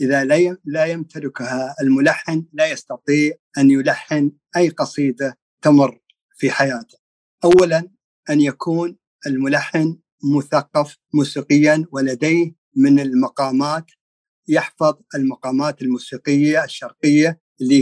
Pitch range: 135-165 Hz